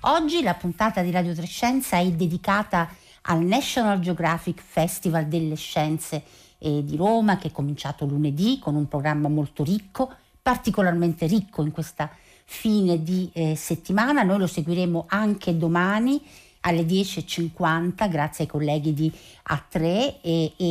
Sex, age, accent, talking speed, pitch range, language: female, 50-69, native, 135 wpm, 160-195 Hz, Italian